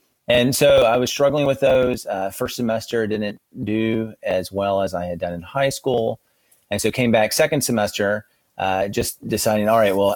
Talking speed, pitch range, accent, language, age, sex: 195 wpm, 100-125 Hz, American, English, 30-49, male